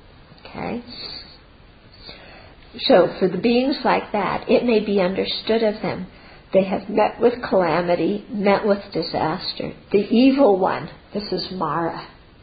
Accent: American